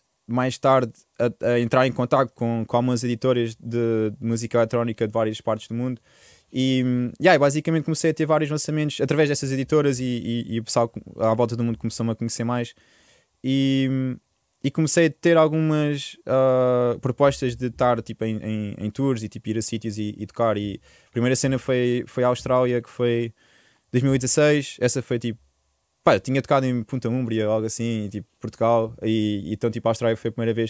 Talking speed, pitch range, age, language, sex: 200 wpm, 115-135 Hz, 20-39, Portuguese, male